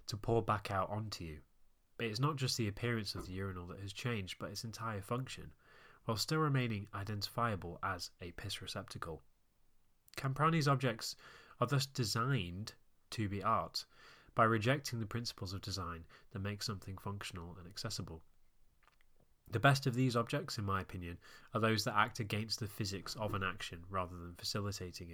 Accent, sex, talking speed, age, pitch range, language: British, male, 165 wpm, 20-39, 90-120 Hz, English